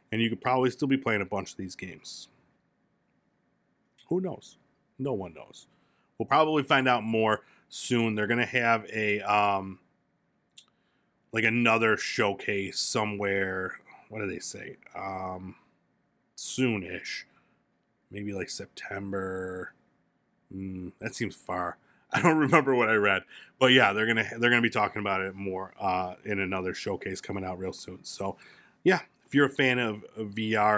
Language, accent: English, American